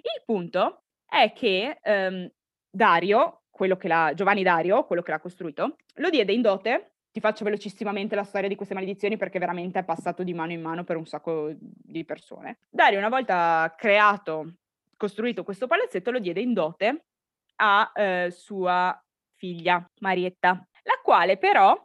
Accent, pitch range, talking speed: native, 180-235 Hz, 160 wpm